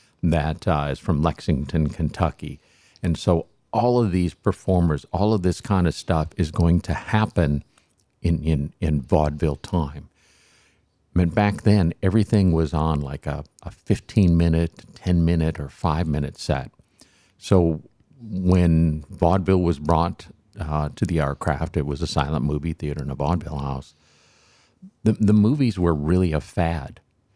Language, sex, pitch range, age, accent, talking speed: English, male, 75-95 Hz, 50-69, American, 150 wpm